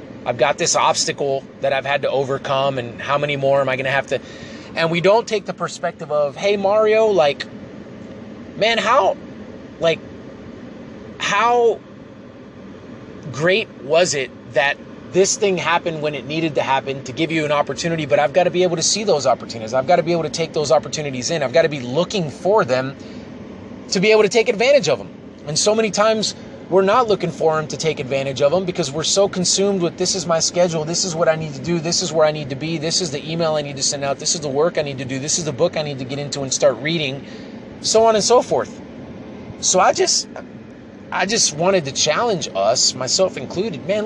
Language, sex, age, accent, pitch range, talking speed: English, male, 30-49, American, 145-190 Hz, 225 wpm